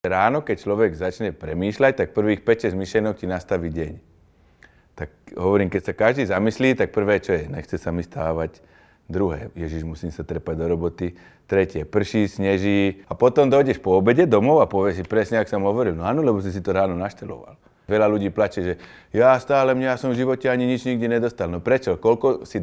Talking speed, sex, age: 200 wpm, male, 30-49